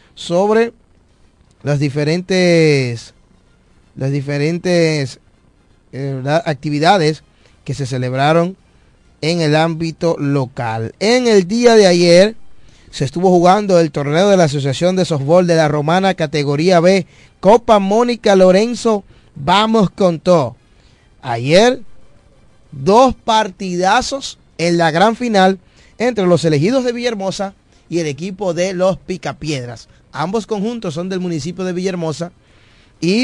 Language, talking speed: Spanish, 120 wpm